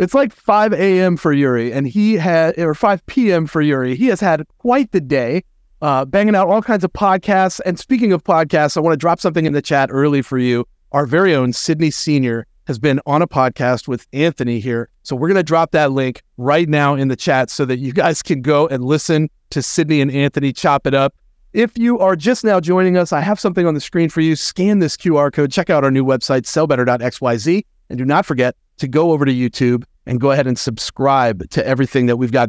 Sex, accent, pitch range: male, American, 130-180 Hz